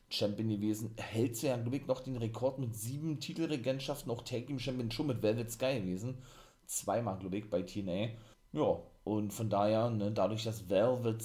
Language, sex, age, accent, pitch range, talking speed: German, male, 30-49, German, 105-120 Hz, 175 wpm